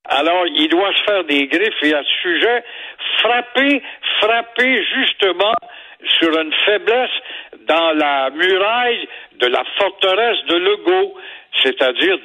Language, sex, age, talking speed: French, male, 60-79, 125 wpm